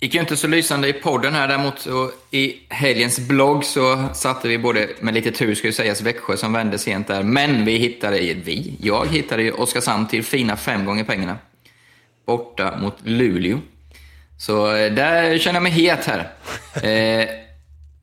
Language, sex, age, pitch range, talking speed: Swedish, male, 20-39, 100-125 Hz, 180 wpm